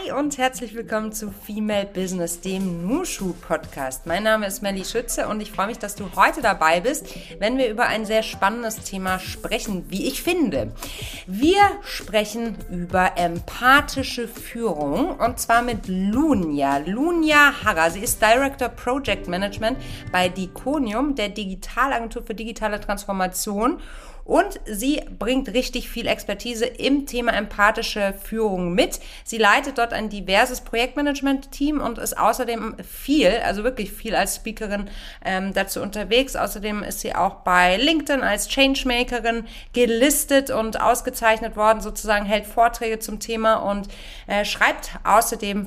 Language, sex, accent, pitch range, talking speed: German, female, German, 205-265 Hz, 140 wpm